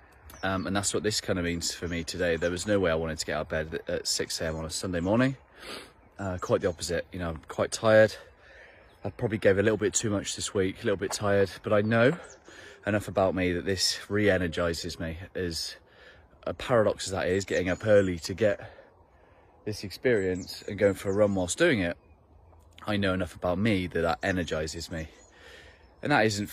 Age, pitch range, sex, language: 30-49, 85-100 Hz, male, English